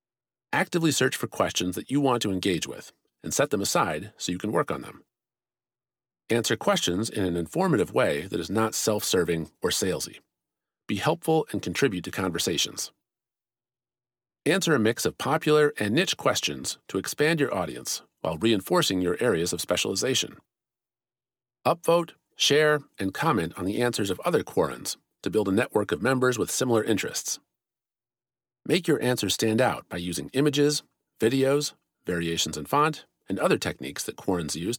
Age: 40-59